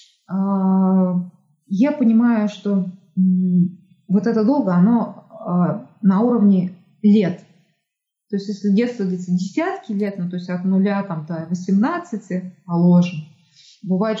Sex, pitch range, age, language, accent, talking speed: female, 180-230 Hz, 20-39, Russian, native, 120 wpm